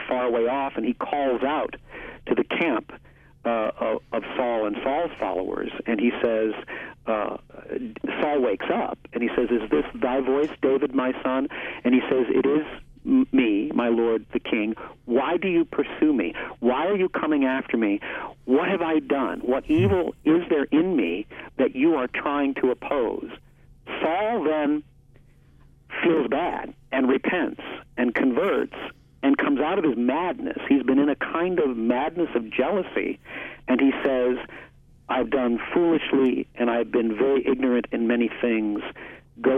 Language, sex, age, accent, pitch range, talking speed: English, male, 50-69, American, 125-185 Hz, 165 wpm